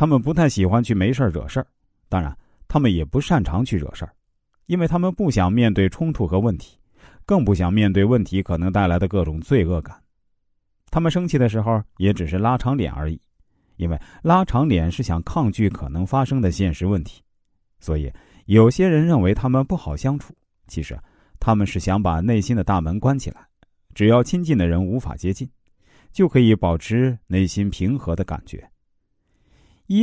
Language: Chinese